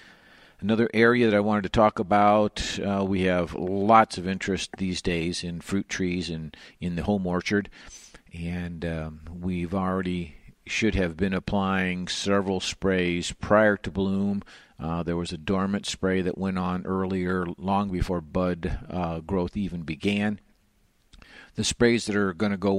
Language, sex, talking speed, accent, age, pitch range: English, male, 160 wpm, American, 50-69, 85-95 Hz